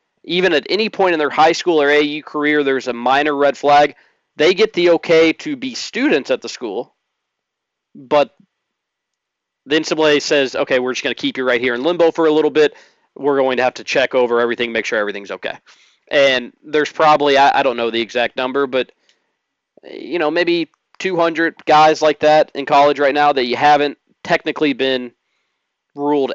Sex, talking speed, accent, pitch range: male, 195 wpm, American, 130-165 Hz